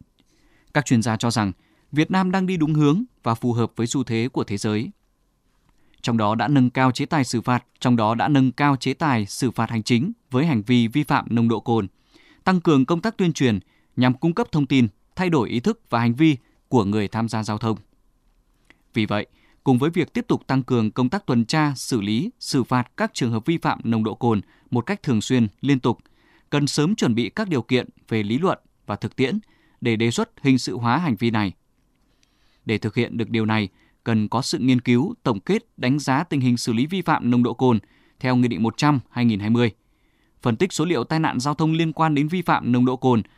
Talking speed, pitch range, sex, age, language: 235 wpm, 115-150 Hz, male, 20-39, Vietnamese